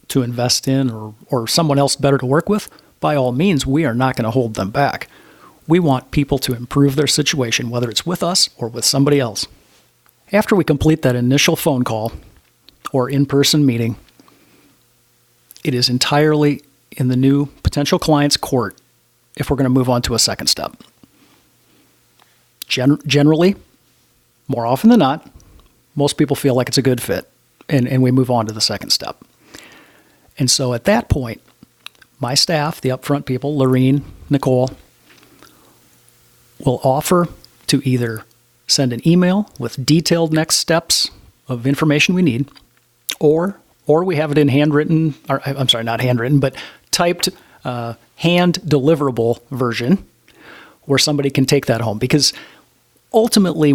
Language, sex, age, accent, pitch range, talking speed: English, male, 40-59, American, 125-155 Hz, 155 wpm